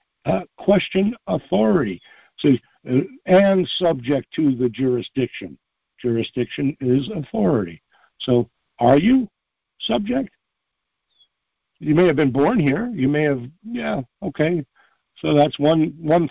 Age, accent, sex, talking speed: 60-79, American, male, 120 wpm